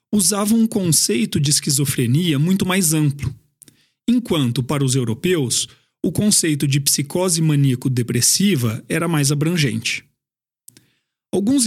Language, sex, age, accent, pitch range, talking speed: Portuguese, male, 40-59, Brazilian, 135-190 Hz, 110 wpm